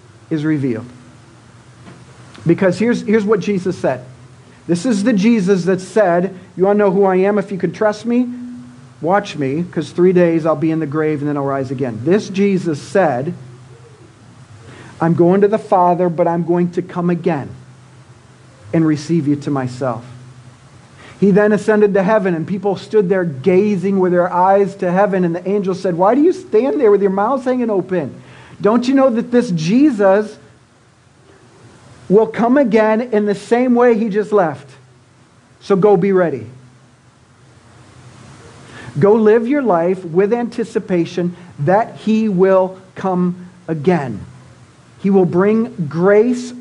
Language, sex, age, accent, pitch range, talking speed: English, male, 50-69, American, 130-200 Hz, 160 wpm